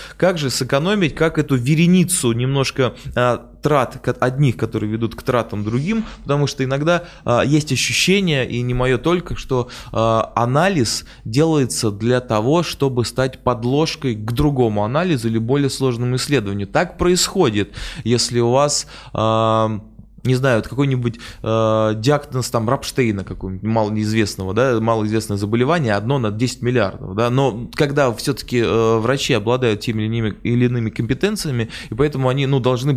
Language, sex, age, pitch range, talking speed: Russian, male, 20-39, 110-145 Hz, 145 wpm